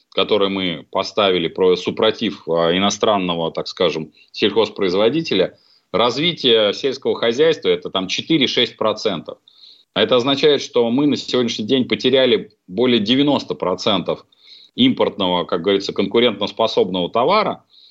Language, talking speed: Russian, 105 wpm